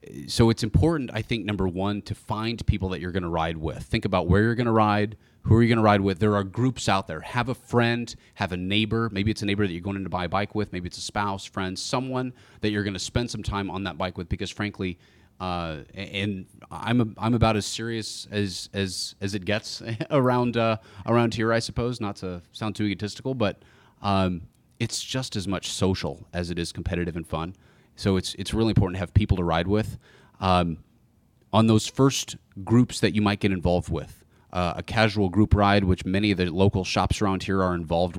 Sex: male